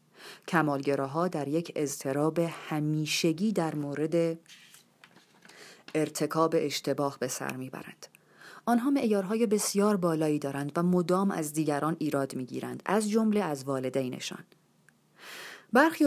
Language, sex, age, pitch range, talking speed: Persian, female, 30-49, 145-185 Hz, 105 wpm